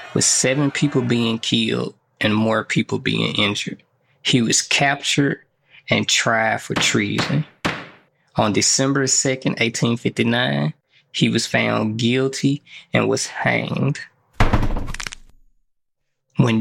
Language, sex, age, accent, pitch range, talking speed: English, male, 20-39, American, 110-130 Hz, 105 wpm